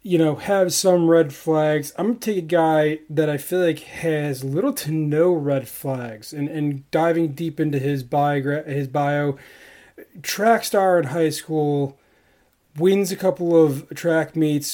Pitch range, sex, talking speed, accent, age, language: 140-165 Hz, male, 165 wpm, American, 30-49, English